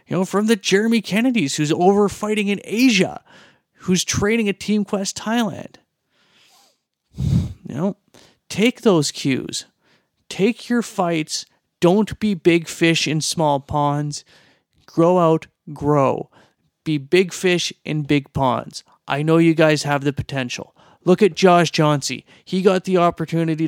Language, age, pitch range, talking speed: English, 30-49, 140-175 Hz, 140 wpm